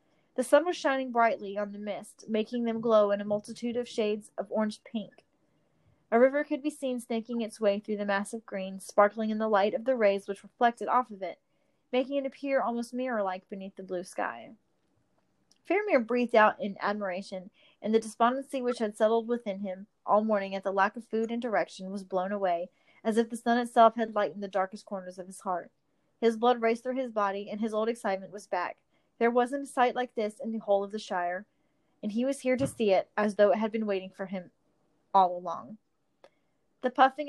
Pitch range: 200-245 Hz